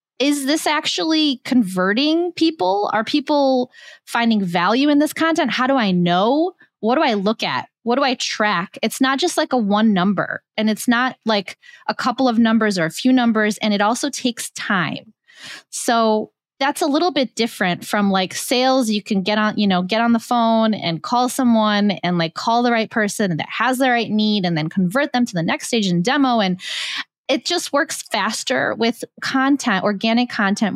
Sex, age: female, 20-39